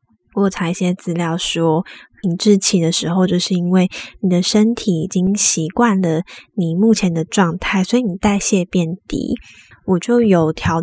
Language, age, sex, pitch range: Chinese, 20-39, female, 180-215 Hz